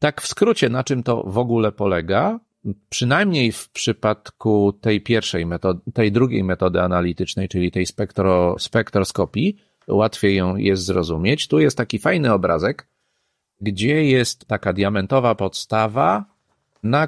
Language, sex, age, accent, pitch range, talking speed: Polish, male, 40-59, native, 100-130 Hz, 135 wpm